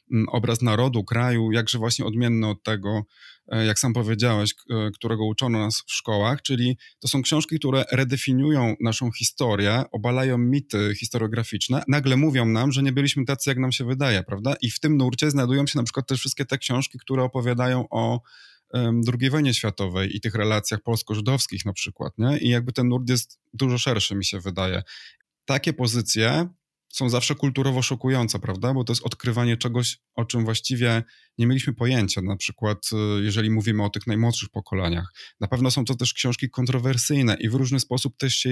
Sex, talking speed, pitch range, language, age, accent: male, 175 wpm, 110-130 Hz, Polish, 20-39, native